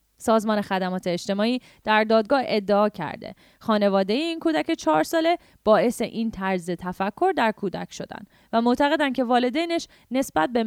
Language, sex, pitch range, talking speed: English, female, 185-260 Hz, 140 wpm